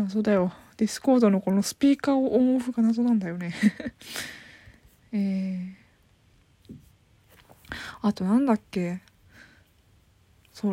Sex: female